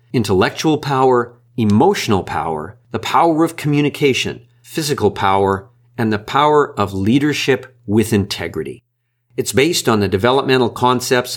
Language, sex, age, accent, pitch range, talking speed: English, male, 50-69, American, 110-135 Hz, 120 wpm